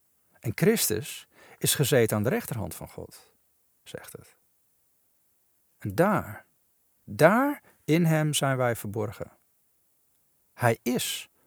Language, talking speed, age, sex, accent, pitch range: Dutch, 110 wpm, 50-69, male, Dutch, 110-150 Hz